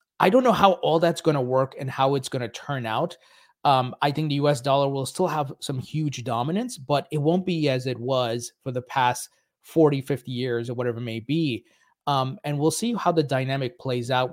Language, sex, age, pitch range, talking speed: English, male, 30-49, 125-155 Hz, 230 wpm